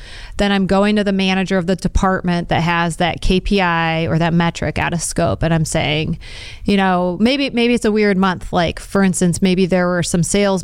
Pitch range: 170-200 Hz